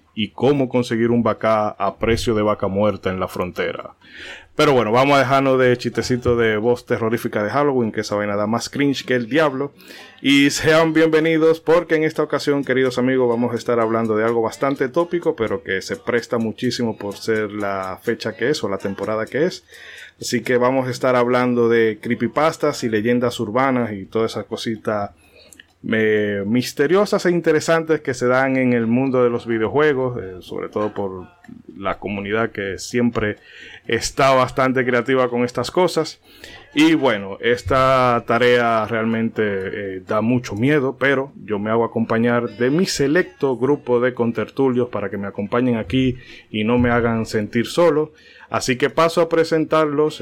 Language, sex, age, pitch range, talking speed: Spanish, male, 30-49, 110-135 Hz, 175 wpm